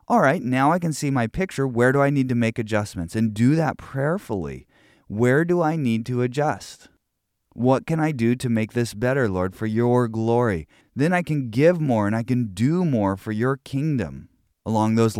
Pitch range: 105-135 Hz